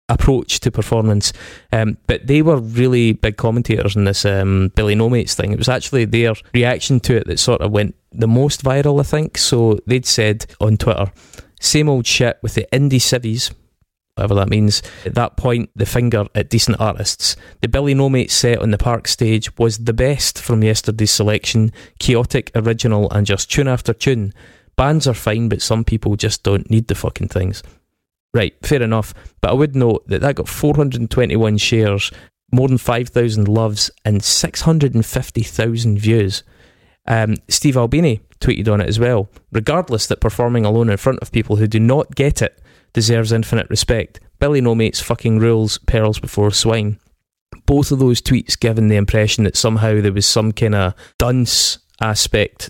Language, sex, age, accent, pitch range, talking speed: English, male, 20-39, British, 105-120 Hz, 175 wpm